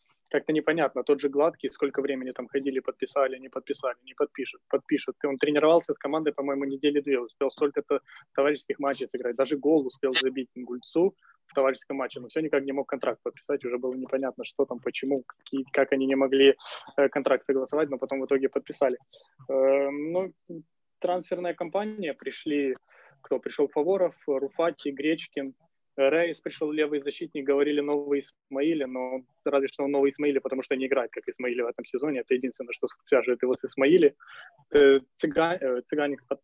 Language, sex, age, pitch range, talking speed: Ukrainian, male, 20-39, 135-155 Hz, 165 wpm